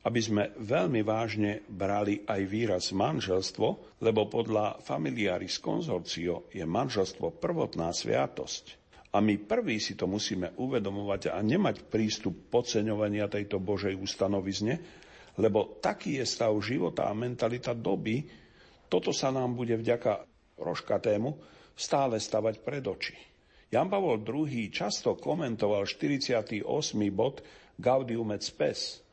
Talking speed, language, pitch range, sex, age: 120 wpm, Slovak, 100-120 Hz, male, 50-69